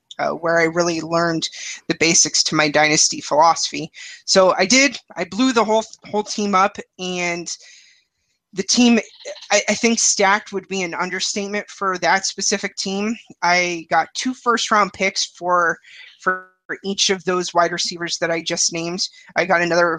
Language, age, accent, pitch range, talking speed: English, 30-49, American, 170-200 Hz, 165 wpm